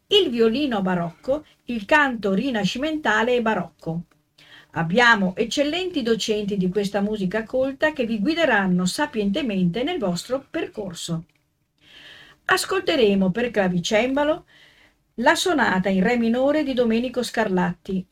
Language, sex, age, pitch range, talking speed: Italian, female, 50-69, 185-270 Hz, 110 wpm